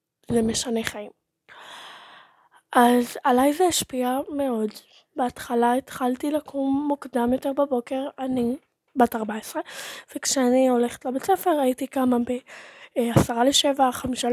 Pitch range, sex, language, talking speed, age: 245-275 Hz, female, Hebrew, 110 wpm, 20-39